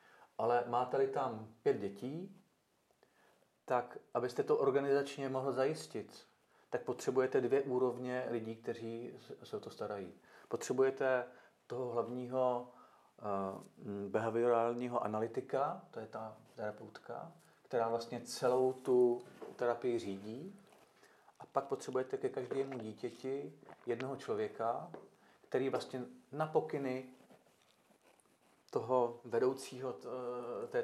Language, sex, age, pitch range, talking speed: Czech, male, 40-59, 115-135 Hz, 95 wpm